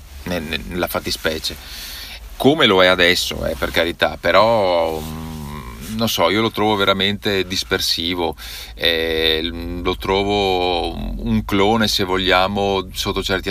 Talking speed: 115 wpm